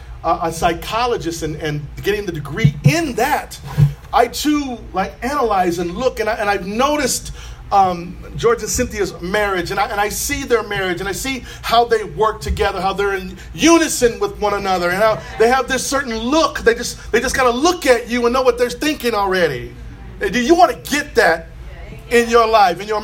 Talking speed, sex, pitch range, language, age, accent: 205 wpm, male, 205-275 Hz, English, 40-59, American